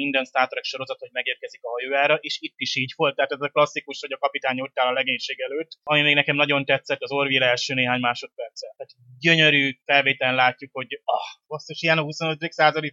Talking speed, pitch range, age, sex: 205 wpm, 130-155 Hz, 30-49, male